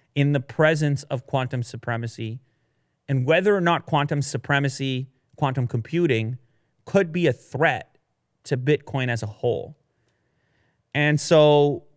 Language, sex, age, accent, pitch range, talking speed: English, male, 30-49, American, 125-160 Hz, 125 wpm